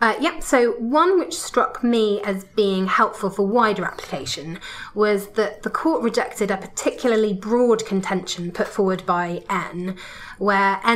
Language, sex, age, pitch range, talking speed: English, female, 20-39, 190-225 Hz, 150 wpm